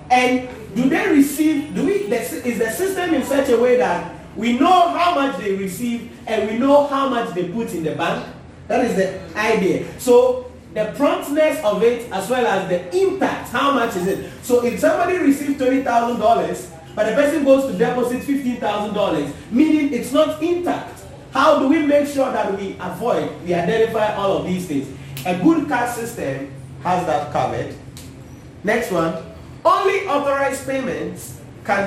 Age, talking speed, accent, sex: 40-59, 170 wpm, Nigerian, male